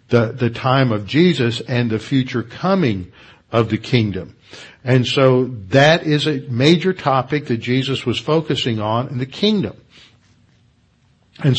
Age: 60-79